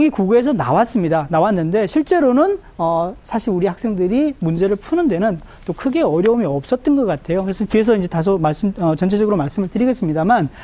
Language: Korean